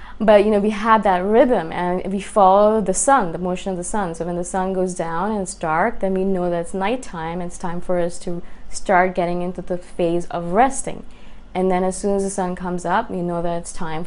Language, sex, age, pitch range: English, female, 20-39, 180-220 Hz